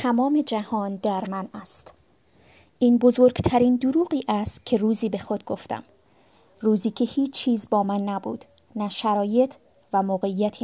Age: 20-39